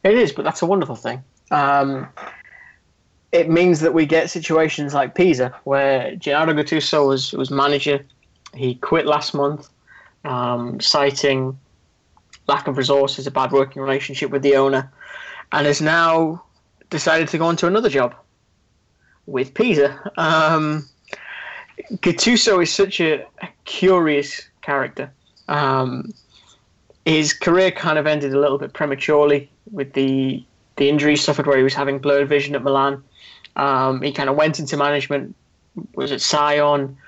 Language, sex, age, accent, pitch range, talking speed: English, male, 20-39, British, 135-160 Hz, 145 wpm